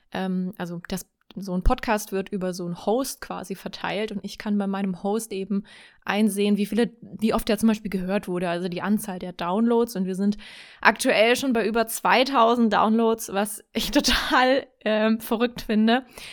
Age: 20-39